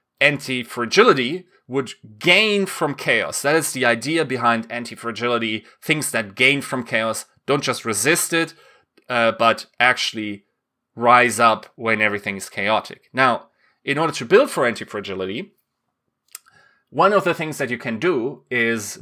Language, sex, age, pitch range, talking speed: English, male, 30-49, 120-170 Hz, 140 wpm